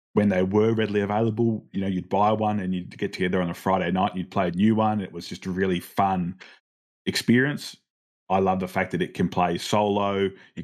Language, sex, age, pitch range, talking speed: English, male, 20-39, 90-100 Hz, 230 wpm